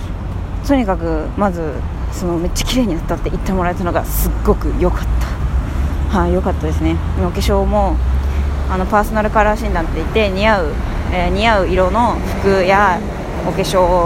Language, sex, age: Japanese, female, 20-39